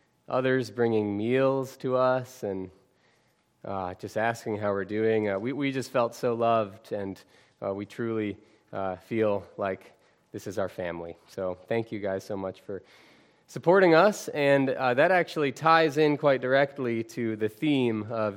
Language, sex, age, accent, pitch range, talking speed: English, male, 20-39, American, 115-155 Hz, 165 wpm